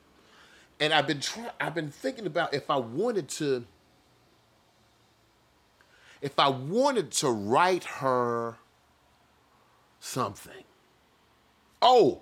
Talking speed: 100 wpm